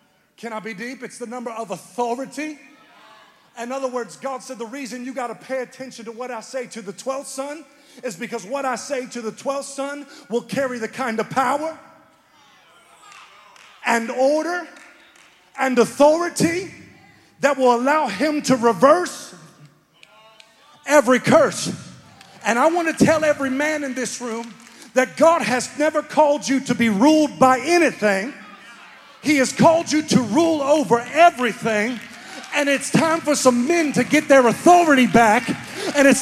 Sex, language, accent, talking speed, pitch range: male, English, American, 160 wpm, 245-305 Hz